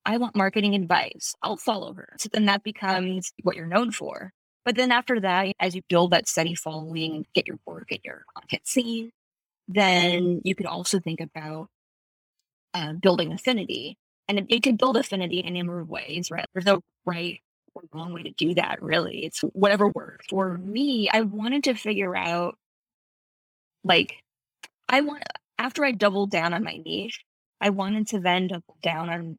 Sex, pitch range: female, 175-215 Hz